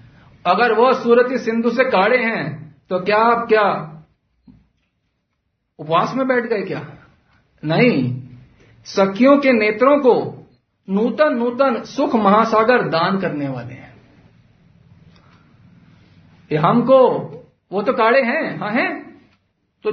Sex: male